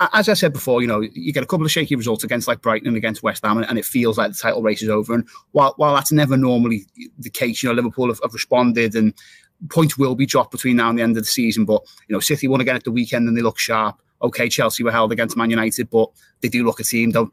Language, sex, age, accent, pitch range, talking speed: English, male, 20-39, British, 115-145 Hz, 285 wpm